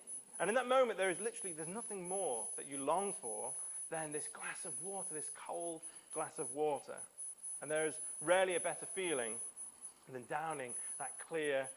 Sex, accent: male, British